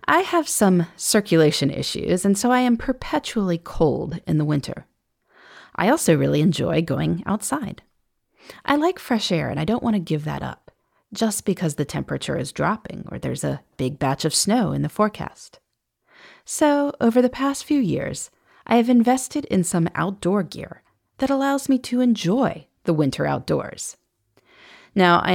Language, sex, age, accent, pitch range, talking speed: English, female, 30-49, American, 155-245 Hz, 170 wpm